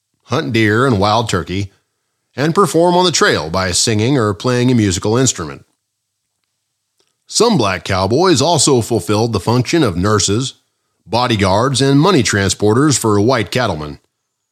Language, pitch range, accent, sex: English, 100-135 Hz, American, male